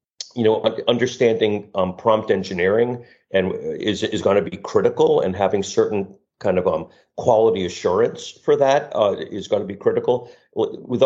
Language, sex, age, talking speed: English, male, 40-59, 150 wpm